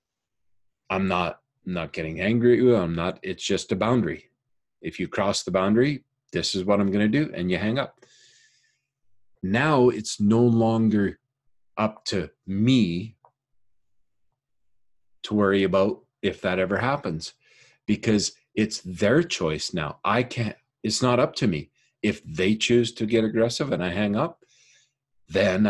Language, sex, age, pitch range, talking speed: English, male, 50-69, 100-145 Hz, 150 wpm